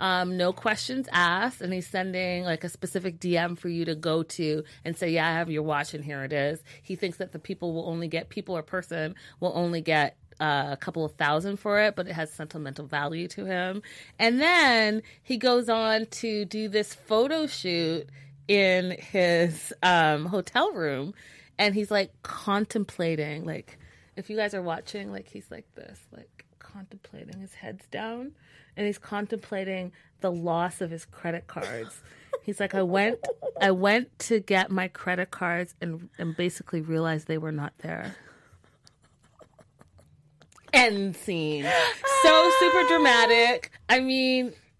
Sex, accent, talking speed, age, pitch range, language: female, American, 165 wpm, 30-49, 160-205 Hz, English